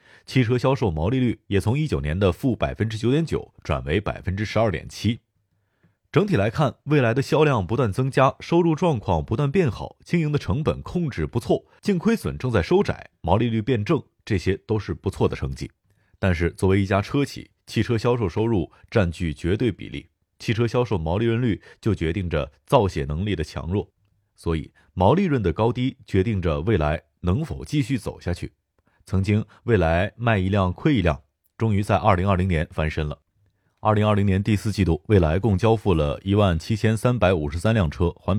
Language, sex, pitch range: Chinese, male, 90-120 Hz